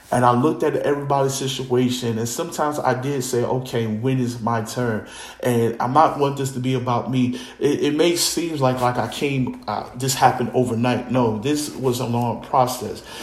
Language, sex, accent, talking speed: English, male, American, 195 wpm